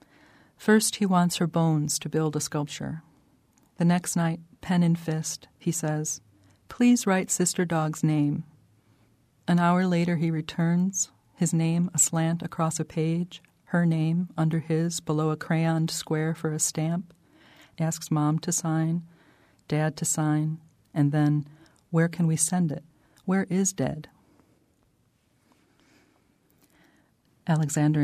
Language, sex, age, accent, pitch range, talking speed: English, female, 40-59, American, 140-165 Hz, 135 wpm